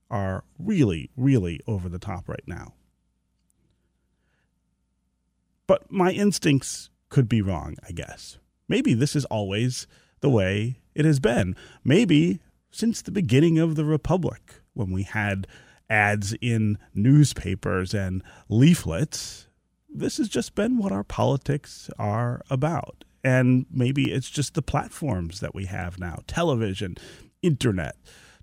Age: 30-49